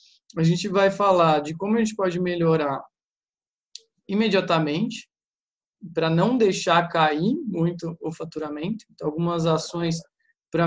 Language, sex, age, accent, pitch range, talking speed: English, male, 20-39, Brazilian, 165-200 Hz, 120 wpm